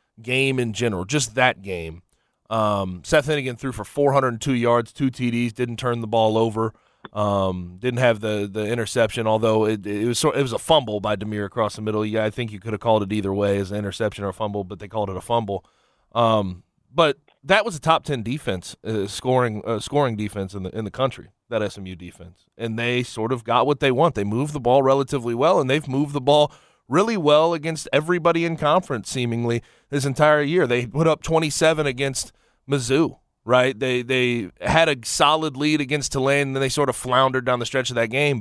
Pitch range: 110-140 Hz